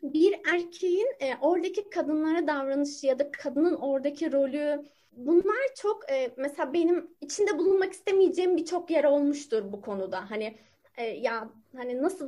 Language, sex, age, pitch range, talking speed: Turkish, female, 30-49, 230-360 Hz, 140 wpm